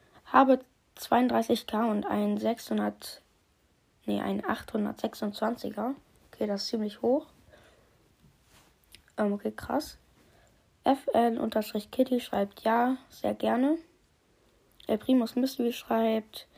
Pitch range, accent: 210-255 Hz, German